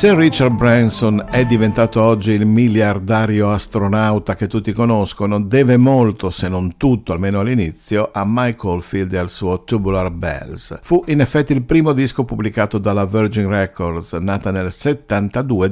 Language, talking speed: Italian, 155 wpm